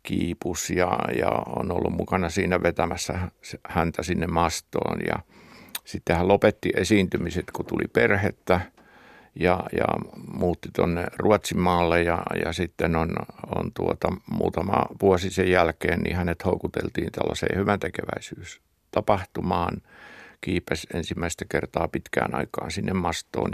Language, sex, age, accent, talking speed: Finnish, male, 60-79, native, 120 wpm